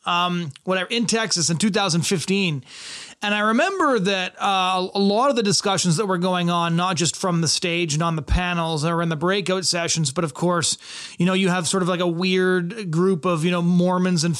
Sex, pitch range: male, 170-190 Hz